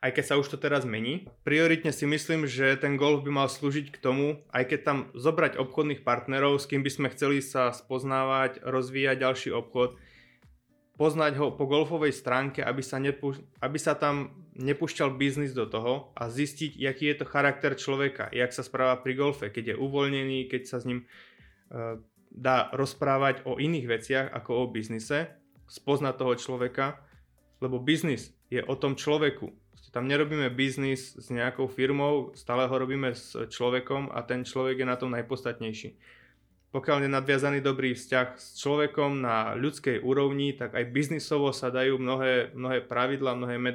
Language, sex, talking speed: Czech, male, 170 wpm